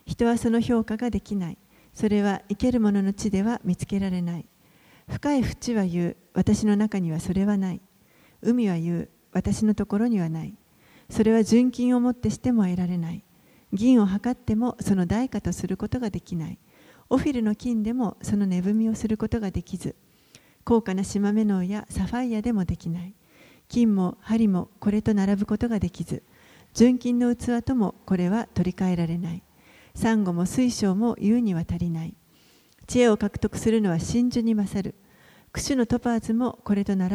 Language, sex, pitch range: Japanese, female, 190-235 Hz